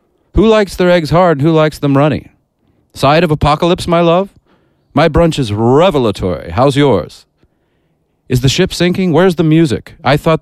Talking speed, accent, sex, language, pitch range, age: 175 wpm, American, male, English, 105-160 Hz, 40-59